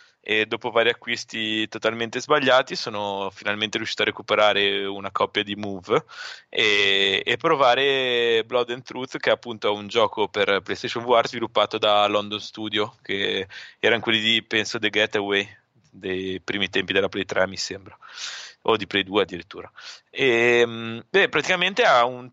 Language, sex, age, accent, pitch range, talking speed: Italian, male, 20-39, native, 105-125 Hz, 155 wpm